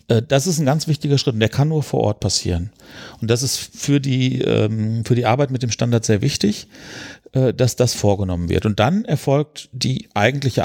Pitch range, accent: 115-150 Hz, German